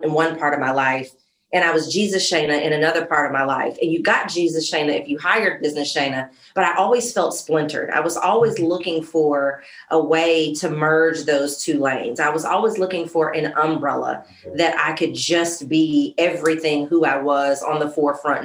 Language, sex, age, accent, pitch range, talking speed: English, female, 30-49, American, 150-170 Hz, 205 wpm